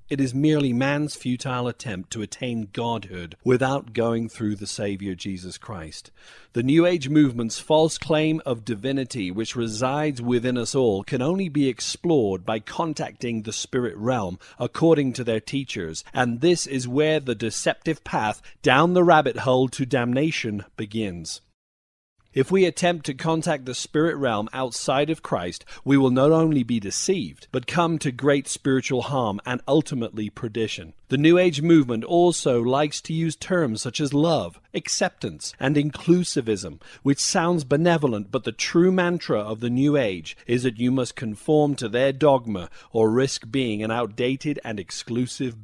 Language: English